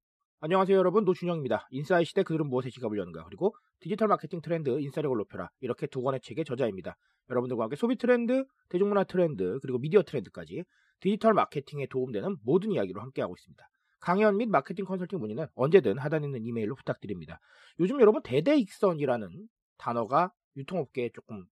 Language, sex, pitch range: Korean, male, 130-215 Hz